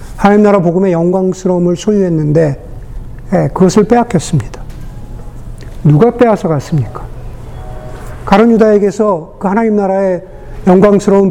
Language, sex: Korean, male